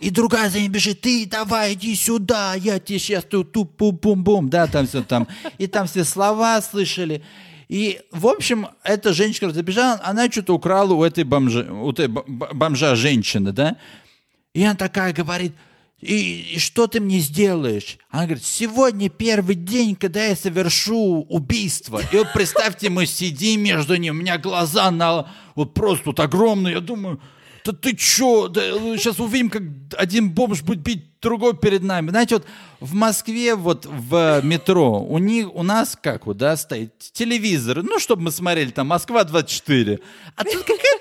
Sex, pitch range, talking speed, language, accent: male, 155-220 Hz, 170 wpm, Russian, native